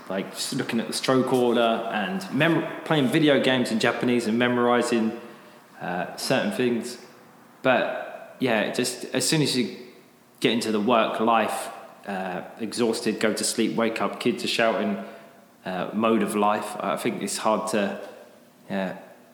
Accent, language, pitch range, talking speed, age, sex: British, English, 110-125 Hz, 160 wpm, 20-39, male